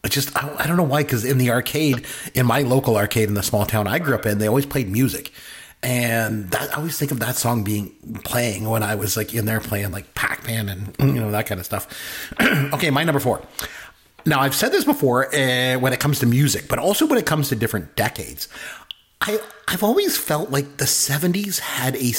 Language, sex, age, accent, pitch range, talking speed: English, male, 30-49, American, 110-150 Hz, 225 wpm